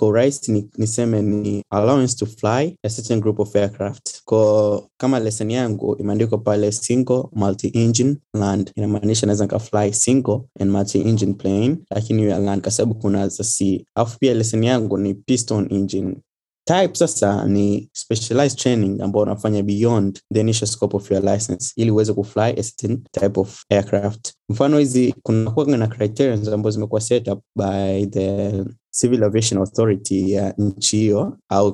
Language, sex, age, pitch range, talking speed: Swahili, male, 20-39, 100-115 Hz, 150 wpm